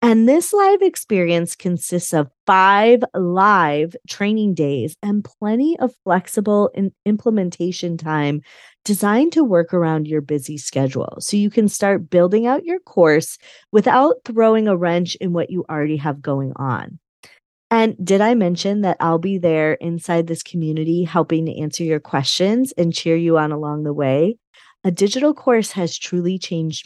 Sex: female